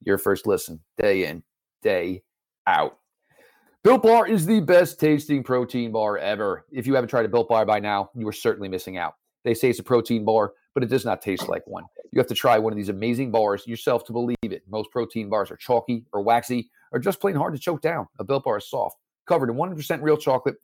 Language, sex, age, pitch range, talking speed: English, male, 40-59, 110-140 Hz, 235 wpm